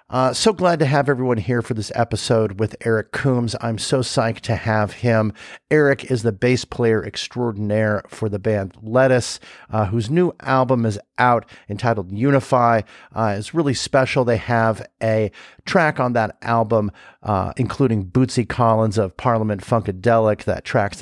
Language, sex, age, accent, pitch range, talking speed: English, male, 50-69, American, 105-130 Hz, 165 wpm